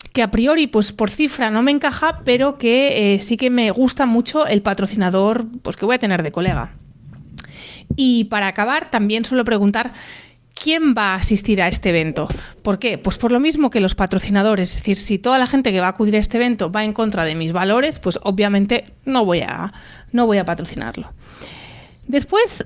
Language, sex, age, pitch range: Spanish, female, 30-49, 200-255 Hz